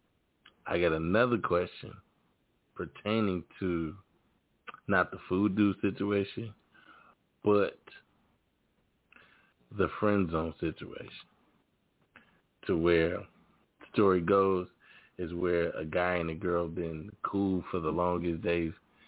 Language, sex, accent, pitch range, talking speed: English, male, American, 85-95 Hz, 105 wpm